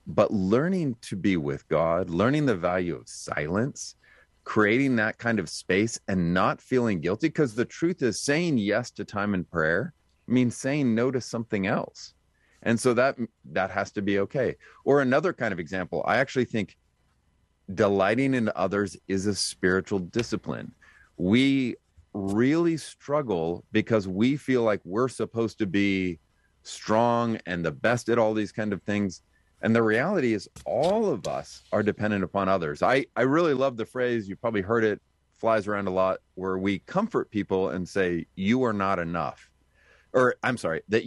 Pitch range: 95-125 Hz